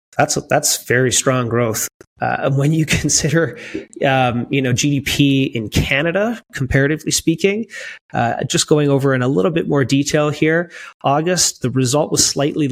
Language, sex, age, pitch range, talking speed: English, male, 30-49, 125-155 Hz, 160 wpm